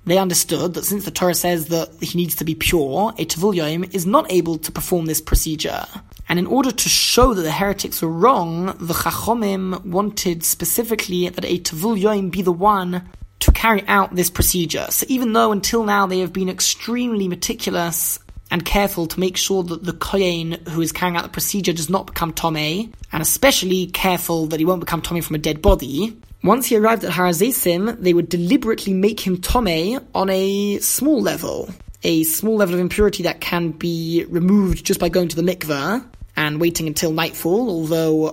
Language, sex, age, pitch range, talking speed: English, male, 20-39, 165-200 Hz, 190 wpm